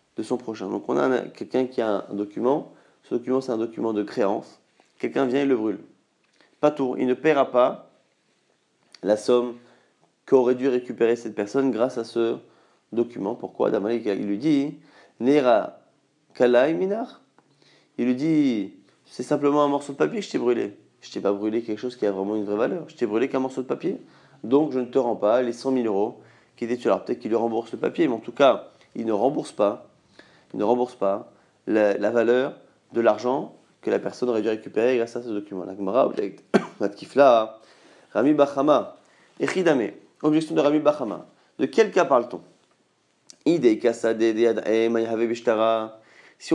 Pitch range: 115-140 Hz